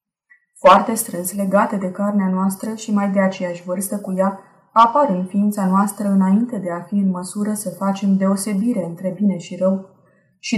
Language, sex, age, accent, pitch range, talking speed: Romanian, female, 20-39, native, 185-210 Hz, 175 wpm